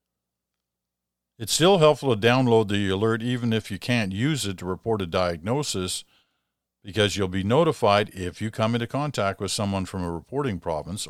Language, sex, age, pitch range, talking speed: English, male, 50-69, 65-105 Hz, 175 wpm